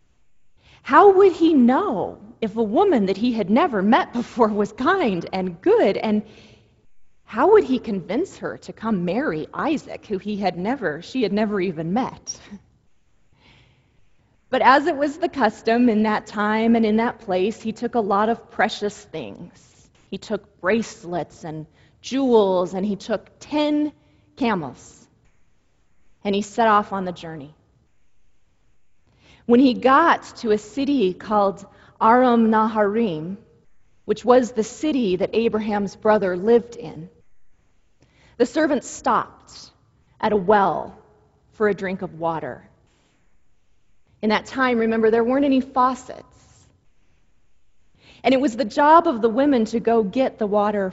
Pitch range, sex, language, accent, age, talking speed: 185-245 Hz, female, English, American, 30-49, 145 wpm